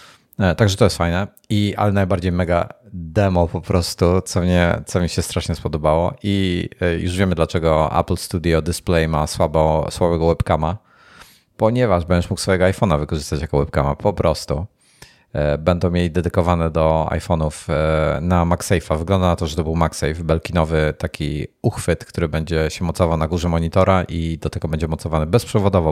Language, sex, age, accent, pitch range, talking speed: Polish, male, 30-49, native, 80-100 Hz, 165 wpm